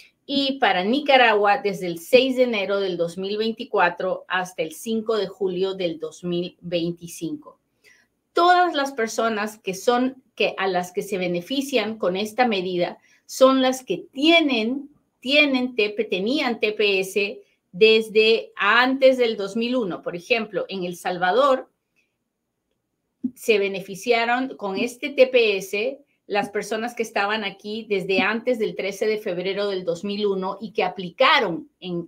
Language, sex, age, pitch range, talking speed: Spanish, female, 30-49, 185-245 Hz, 130 wpm